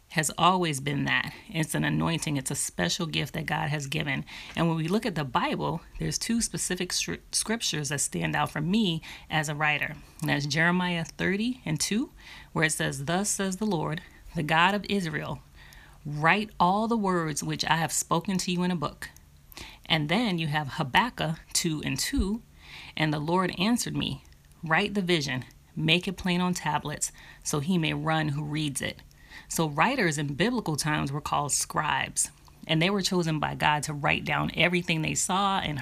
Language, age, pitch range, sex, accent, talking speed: English, 30-49, 150-180 Hz, female, American, 190 wpm